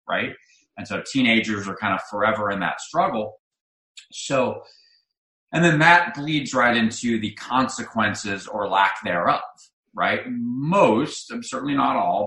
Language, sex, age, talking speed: English, male, 30-49, 135 wpm